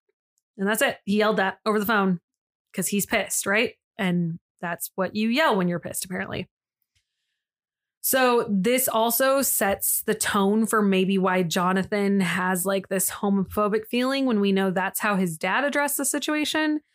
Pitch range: 190-240 Hz